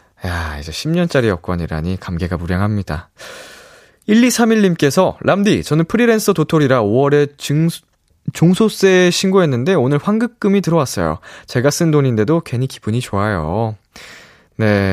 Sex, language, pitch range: male, Korean, 100-155 Hz